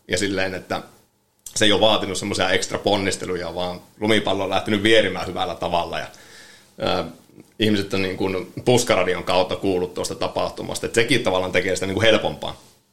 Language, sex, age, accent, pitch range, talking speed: Finnish, male, 30-49, native, 95-110 Hz, 165 wpm